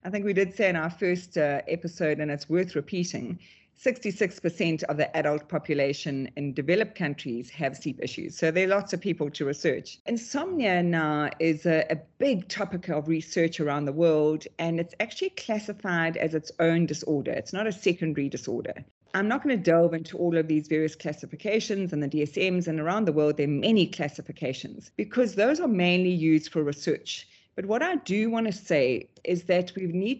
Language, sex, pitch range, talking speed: English, female, 155-195 Hz, 195 wpm